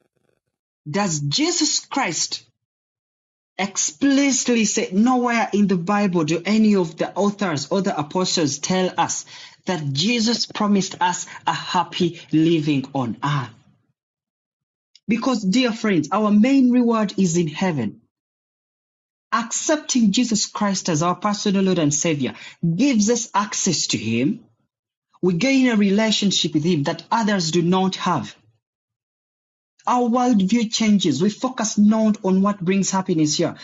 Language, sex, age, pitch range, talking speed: English, male, 30-49, 155-210 Hz, 130 wpm